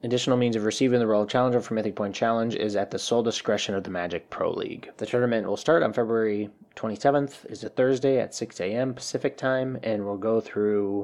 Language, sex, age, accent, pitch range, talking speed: English, male, 20-39, American, 100-120 Hz, 210 wpm